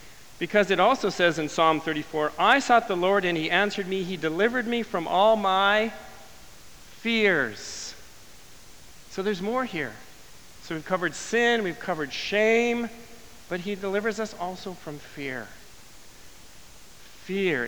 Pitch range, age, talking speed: 140-185 Hz, 40-59, 140 wpm